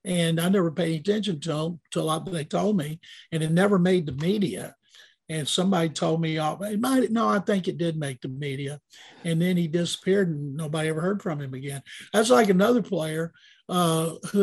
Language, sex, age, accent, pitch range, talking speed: English, male, 50-69, American, 160-195 Hz, 210 wpm